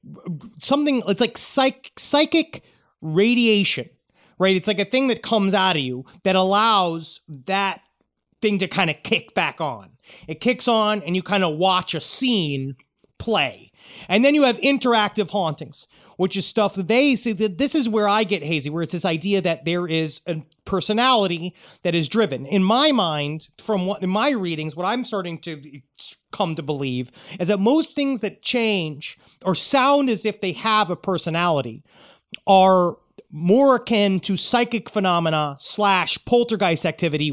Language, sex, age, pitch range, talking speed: English, male, 30-49, 165-210 Hz, 170 wpm